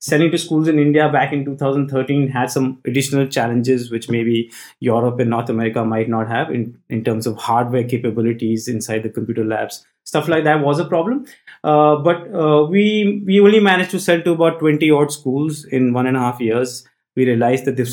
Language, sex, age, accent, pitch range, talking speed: English, male, 20-39, Indian, 125-160 Hz, 205 wpm